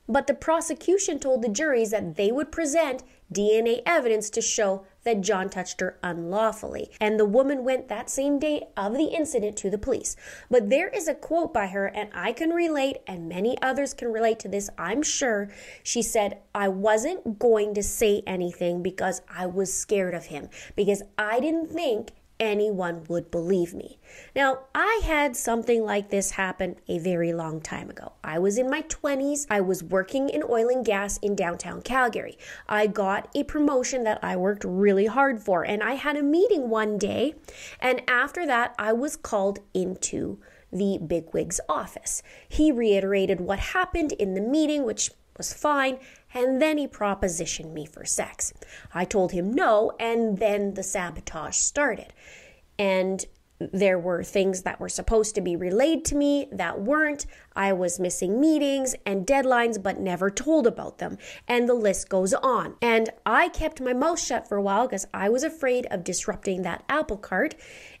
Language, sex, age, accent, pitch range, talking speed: English, female, 20-39, American, 195-270 Hz, 180 wpm